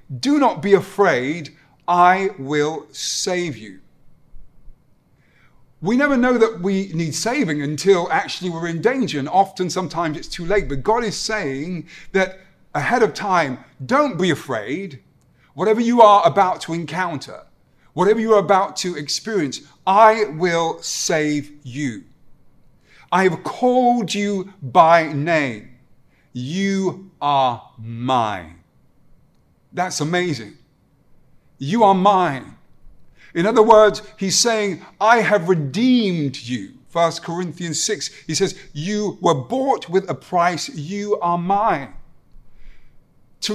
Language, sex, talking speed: English, male, 125 wpm